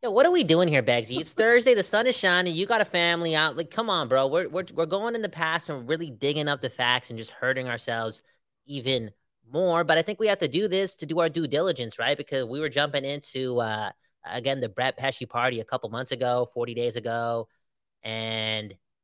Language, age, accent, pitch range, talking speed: English, 20-39, American, 120-155 Hz, 235 wpm